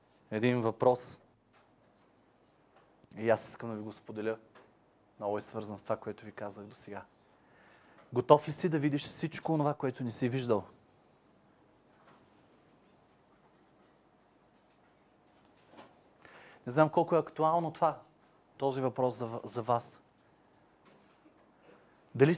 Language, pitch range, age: Bulgarian, 125-150 Hz, 30-49